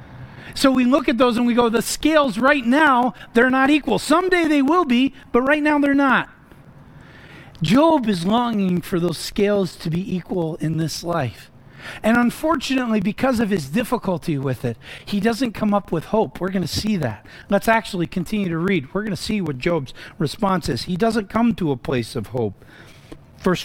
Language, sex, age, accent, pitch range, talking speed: English, male, 40-59, American, 145-220 Hz, 195 wpm